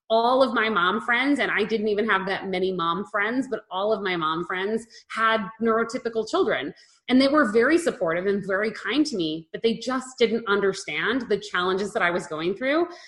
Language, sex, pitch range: English, female, 190-265 Hz